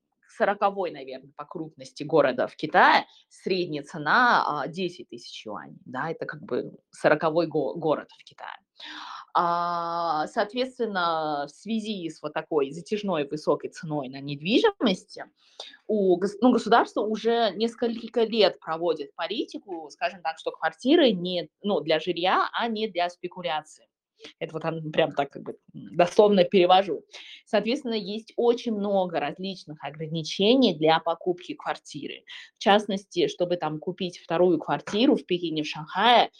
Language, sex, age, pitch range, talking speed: Russian, female, 20-39, 160-225 Hz, 125 wpm